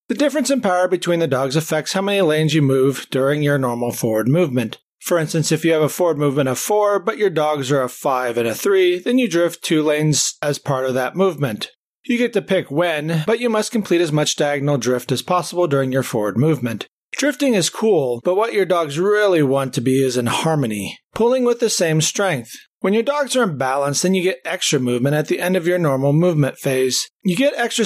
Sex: male